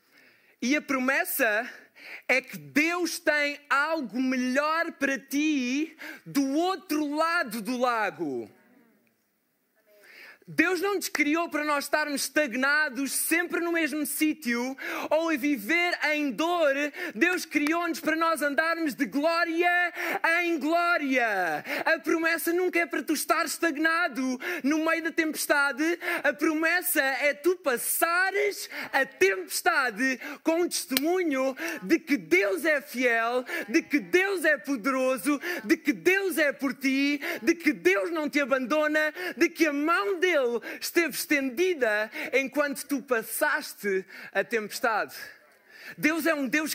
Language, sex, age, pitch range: Portuguese, male, 20-39, 275-335 Hz